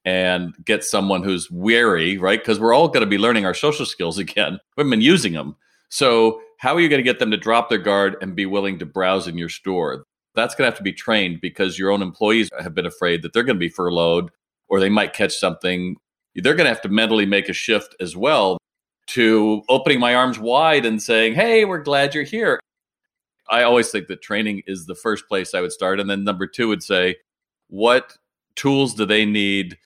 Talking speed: 225 wpm